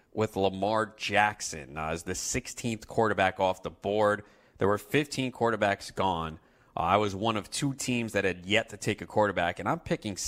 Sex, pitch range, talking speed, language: male, 95-115 Hz, 195 wpm, English